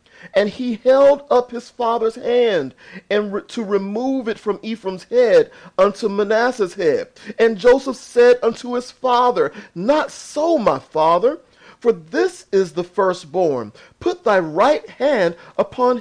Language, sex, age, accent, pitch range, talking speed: English, male, 40-59, American, 175-260 Hz, 140 wpm